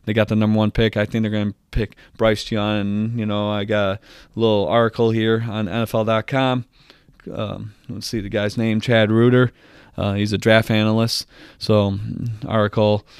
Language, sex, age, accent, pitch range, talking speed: English, male, 20-39, American, 105-115 Hz, 180 wpm